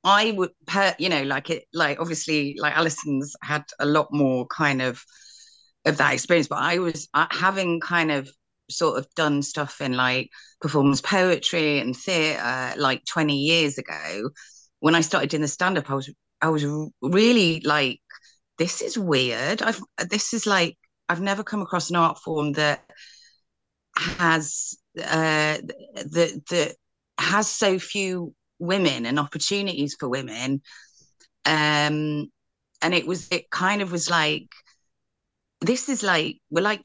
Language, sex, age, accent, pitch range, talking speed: English, female, 30-49, British, 135-170 Hz, 150 wpm